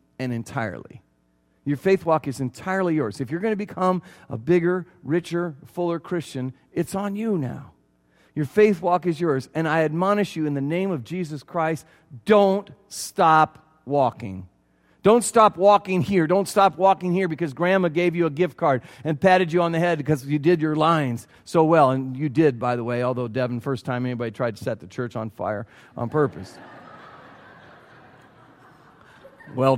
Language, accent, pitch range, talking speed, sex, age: English, American, 125-190 Hz, 180 wpm, male, 40-59